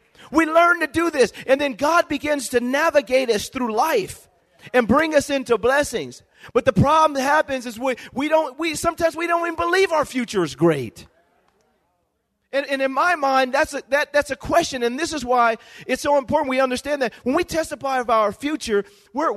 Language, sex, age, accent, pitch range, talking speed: English, male, 40-59, American, 235-300 Hz, 205 wpm